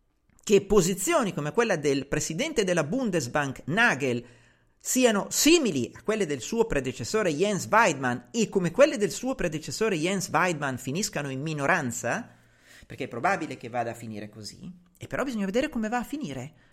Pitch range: 140-230 Hz